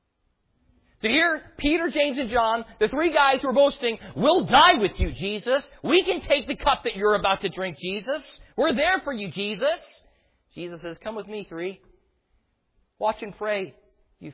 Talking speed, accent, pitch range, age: 175 wpm, American, 135-185 Hz, 40-59